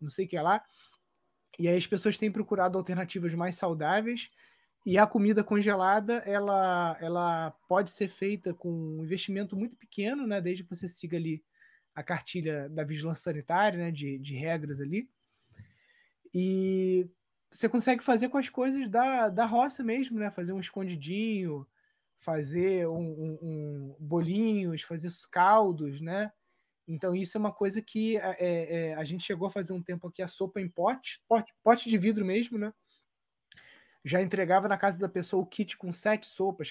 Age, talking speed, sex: 20-39, 170 wpm, male